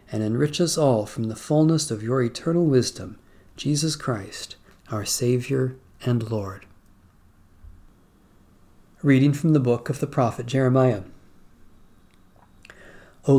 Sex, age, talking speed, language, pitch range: male, 40-59, 120 wpm, English, 110-140 Hz